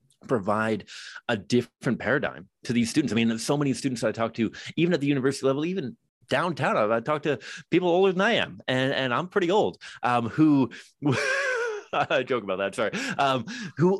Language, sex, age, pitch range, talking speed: English, male, 30-49, 105-140 Hz, 195 wpm